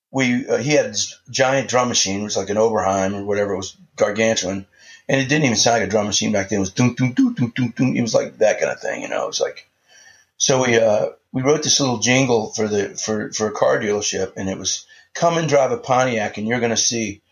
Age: 40-59